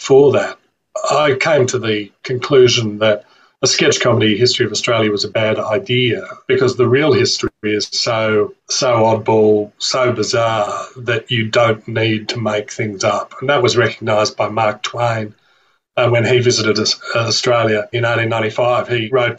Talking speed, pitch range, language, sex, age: 160 wpm, 110-125 Hz, English, male, 40-59